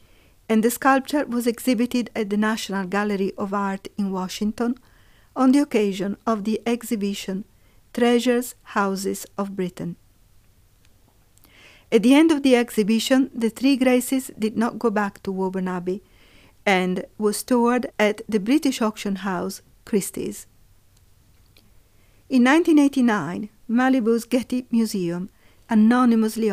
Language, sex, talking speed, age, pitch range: Italian, female, 120 wpm, 50-69, 190-240 Hz